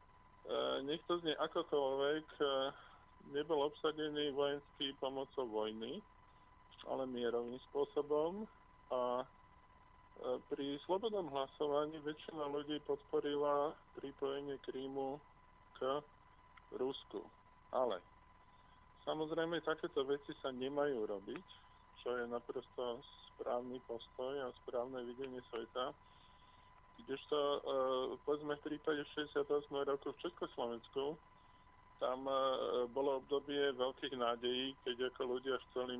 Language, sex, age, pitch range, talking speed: Slovak, male, 20-39, 125-145 Hz, 100 wpm